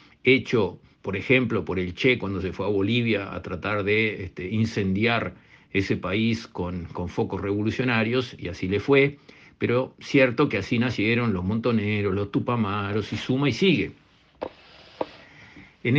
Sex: male